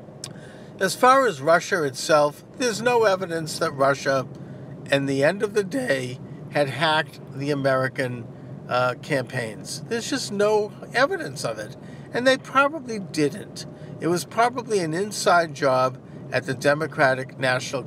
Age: 50-69